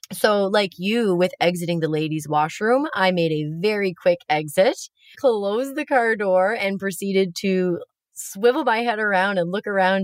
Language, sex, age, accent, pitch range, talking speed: English, female, 30-49, American, 150-210 Hz, 165 wpm